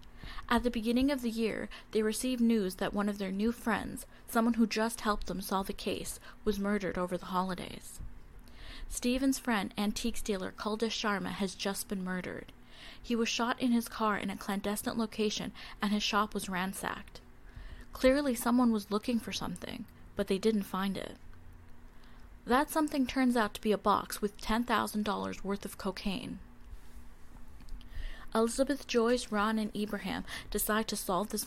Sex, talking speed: female, 165 wpm